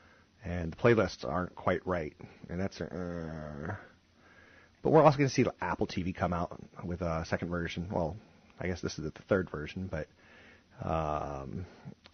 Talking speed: 170 wpm